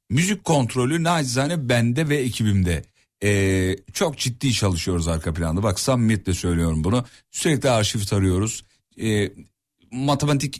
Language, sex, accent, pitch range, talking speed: Turkish, male, native, 100-140 Hz, 120 wpm